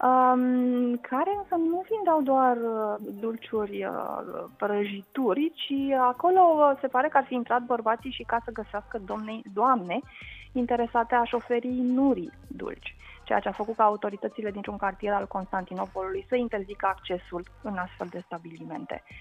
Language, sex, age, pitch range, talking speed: Romanian, female, 20-39, 190-245 Hz, 155 wpm